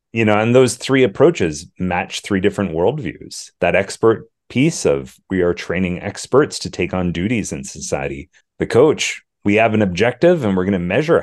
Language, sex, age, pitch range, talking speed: English, male, 30-49, 90-115 Hz, 185 wpm